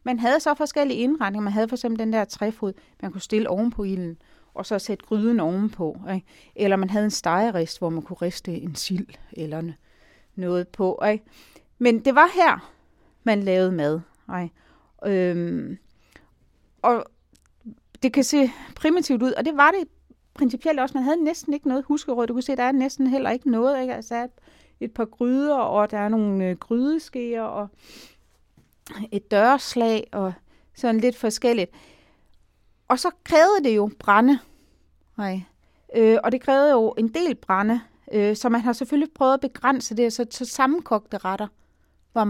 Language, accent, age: Danish, native, 30-49